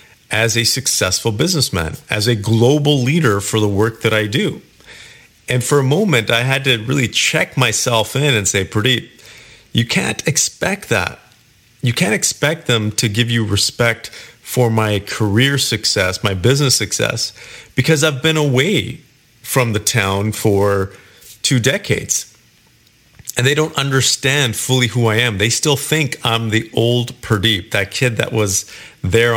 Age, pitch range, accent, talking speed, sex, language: 40-59, 110-135 Hz, American, 155 wpm, male, English